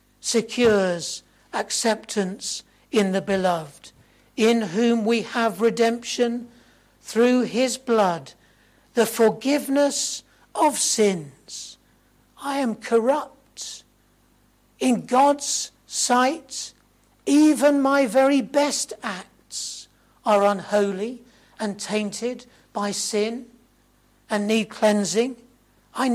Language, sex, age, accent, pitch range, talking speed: English, male, 60-79, British, 200-245 Hz, 85 wpm